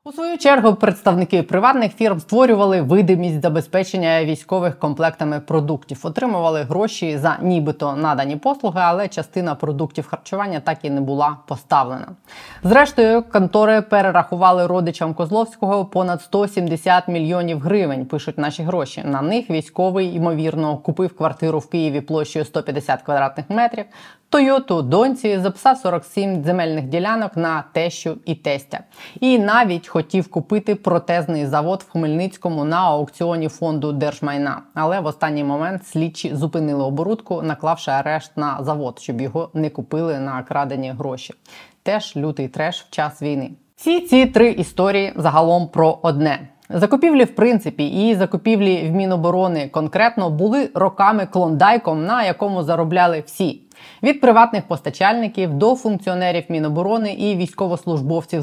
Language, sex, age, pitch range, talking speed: Ukrainian, female, 20-39, 155-200 Hz, 130 wpm